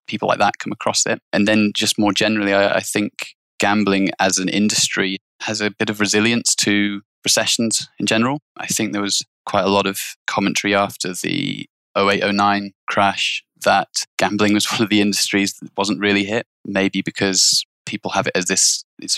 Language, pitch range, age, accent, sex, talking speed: English, 100-110 Hz, 20-39, British, male, 190 wpm